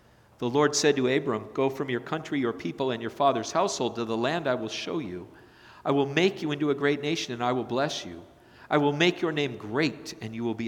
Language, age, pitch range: English, 50-69, 120-195 Hz